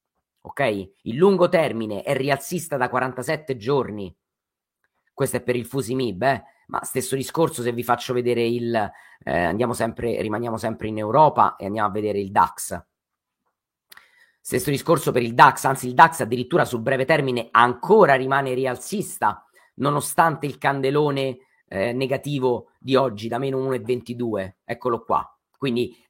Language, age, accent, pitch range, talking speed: Italian, 40-59, native, 120-145 Hz, 145 wpm